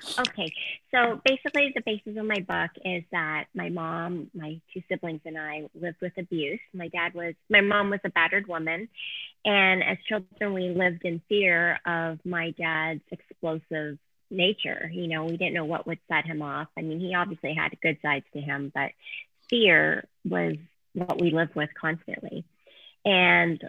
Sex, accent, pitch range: female, American, 160-190 Hz